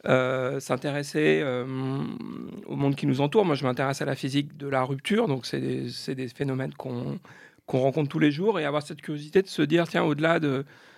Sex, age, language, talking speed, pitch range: male, 40-59, French, 215 wpm, 130-155 Hz